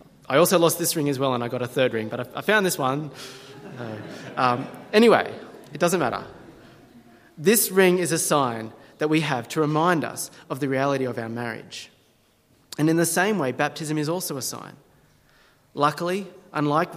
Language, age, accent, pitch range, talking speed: English, 30-49, Australian, 125-155 Hz, 185 wpm